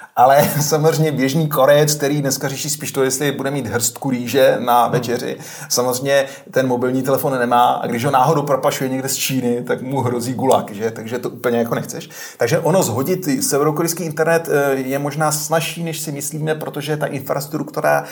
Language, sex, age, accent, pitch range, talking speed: Czech, male, 30-49, native, 135-155 Hz, 175 wpm